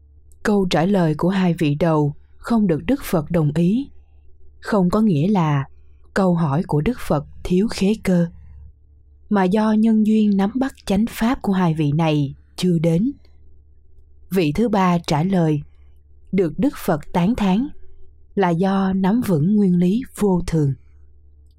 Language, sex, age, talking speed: Vietnamese, female, 20-39, 160 wpm